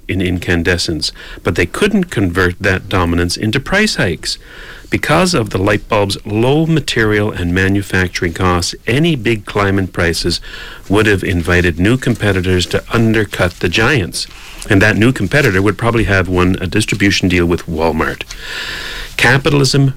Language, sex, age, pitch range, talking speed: English, male, 40-59, 95-120 Hz, 145 wpm